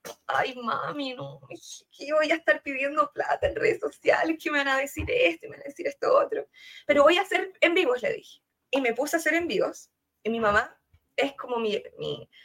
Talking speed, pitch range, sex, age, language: 225 wpm, 230-335 Hz, female, 20-39, Spanish